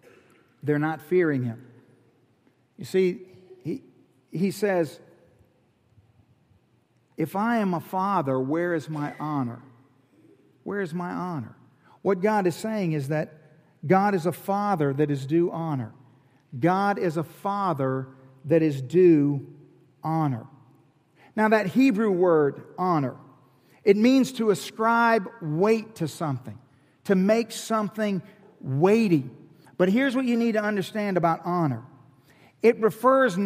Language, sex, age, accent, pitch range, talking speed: English, male, 50-69, American, 150-220 Hz, 125 wpm